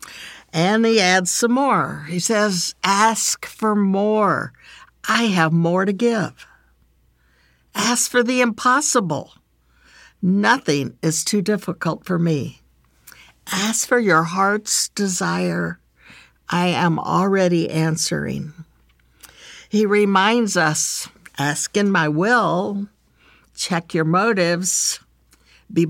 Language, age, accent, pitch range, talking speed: English, 60-79, American, 155-210 Hz, 105 wpm